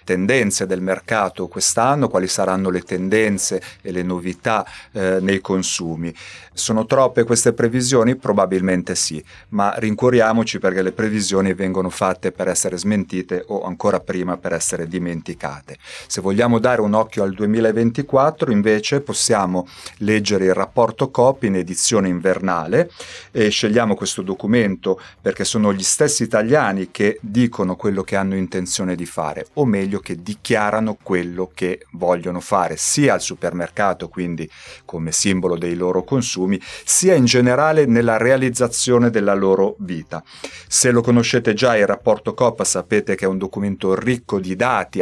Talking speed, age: 145 wpm, 30-49